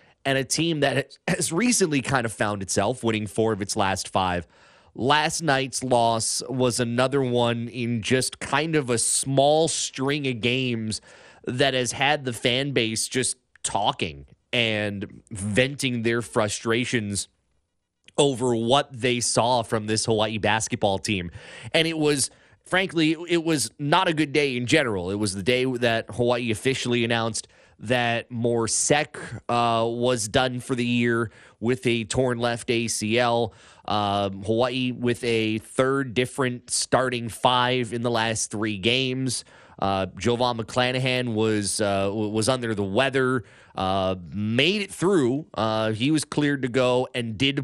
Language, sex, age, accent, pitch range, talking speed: English, male, 30-49, American, 110-135 Hz, 150 wpm